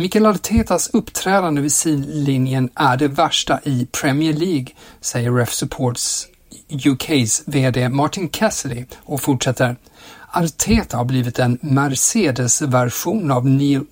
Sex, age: male, 60-79